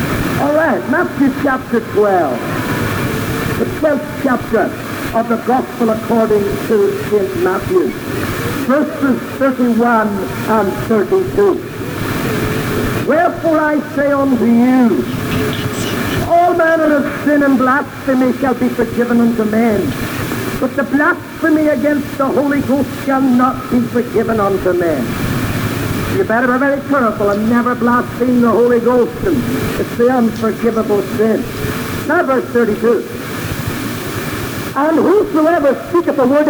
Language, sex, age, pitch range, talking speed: English, male, 60-79, 225-290 Hz, 115 wpm